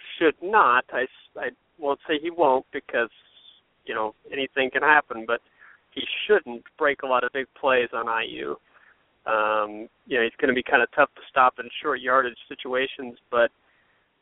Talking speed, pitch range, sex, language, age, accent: 175 wpm, 120-140 Hz, male, English, 30-49, American